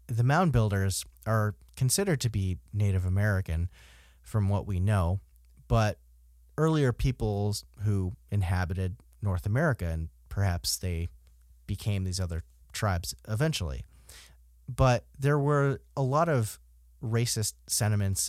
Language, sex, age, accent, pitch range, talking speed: English, male, 30-49, American, 70-110 Hz, 120 wpm